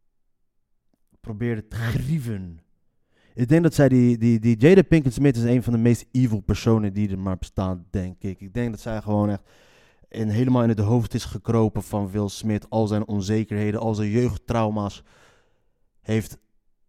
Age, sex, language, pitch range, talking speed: 20-39, male, Dutch, 105-125 Hz, 170 wpm